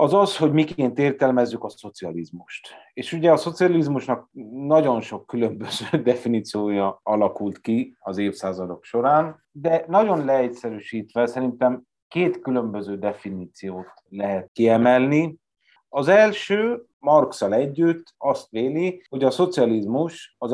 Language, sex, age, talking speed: Hungarian, male, 30-49, 115 wpm